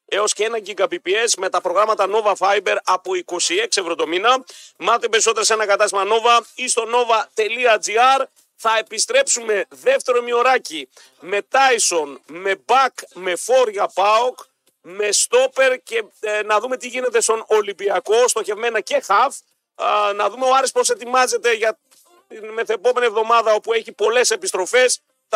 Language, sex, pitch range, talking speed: Greek, male, 195-255 Hz, 150 wpm